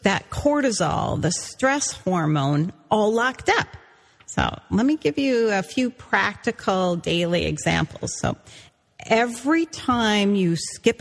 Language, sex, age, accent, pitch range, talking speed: English, female, 40-59, American, 170-250 Hz, 125 wpm